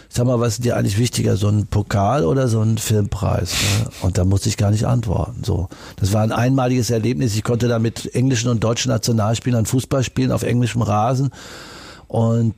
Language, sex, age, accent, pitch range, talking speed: German, male, 50-69, German, 105-125 Hz, 200 wpm